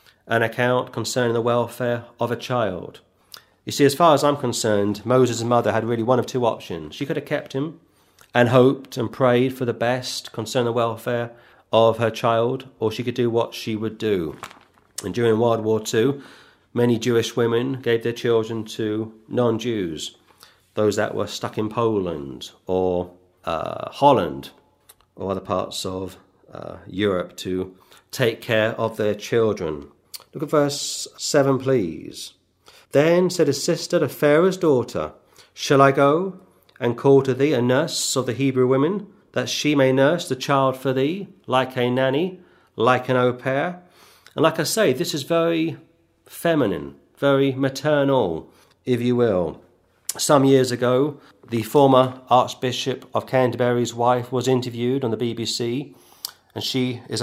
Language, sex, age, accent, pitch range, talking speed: English, male, 40-59, British, 115-135 Hz, 160 wpm